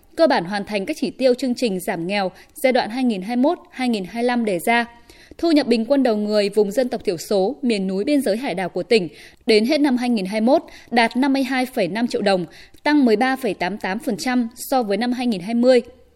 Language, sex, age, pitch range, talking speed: Vietnamese, female, 20-39, 220-280 Hz, 180 wpm